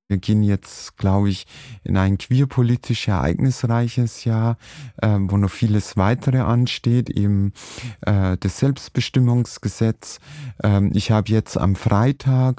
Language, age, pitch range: German, 30-49, 105-130 Hz